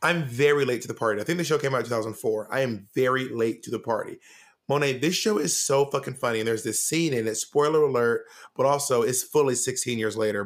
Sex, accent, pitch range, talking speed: male, American, 120-150 Hz, 245 wpm